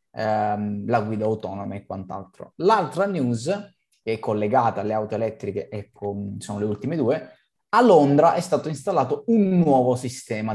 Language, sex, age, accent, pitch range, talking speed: Italian, male, 20-39, native, 110-135 Hz, 150 wpm